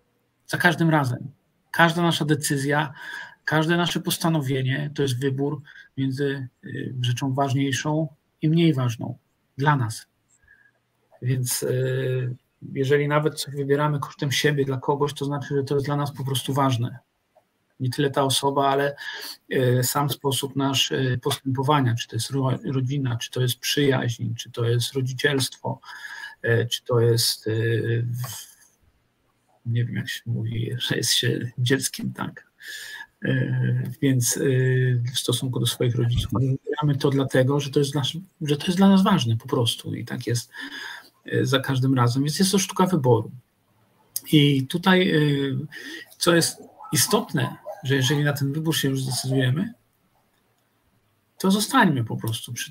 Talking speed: 135 wpm